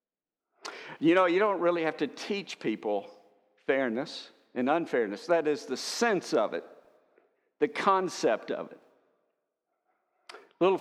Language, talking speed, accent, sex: English, 130 wpm, American, male